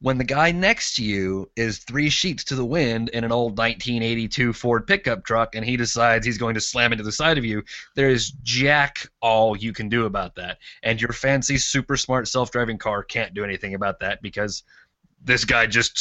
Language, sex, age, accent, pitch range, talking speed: English, male, 20-39, American, 105-135 Hz, 210 wpm